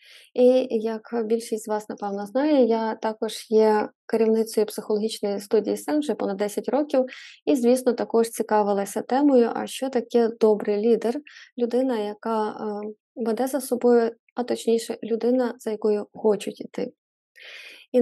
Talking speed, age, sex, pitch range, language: 135 wpm, 20-39, female, 215-245 Hz, Ukrainian